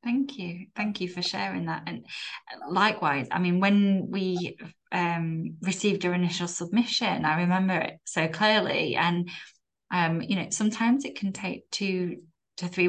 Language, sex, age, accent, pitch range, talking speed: English, female, 10-29, British, 170-195 Hz, 160 wpm